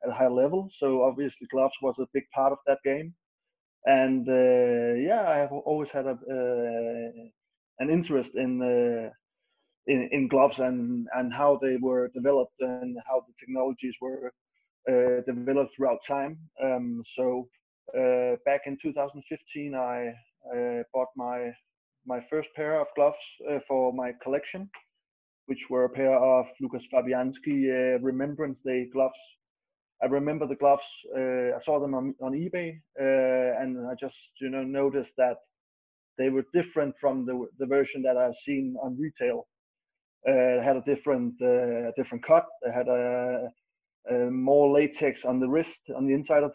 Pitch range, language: 125-145 Hz, English